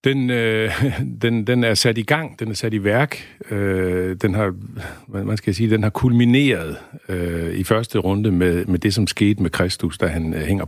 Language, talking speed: Danish, 200 wpm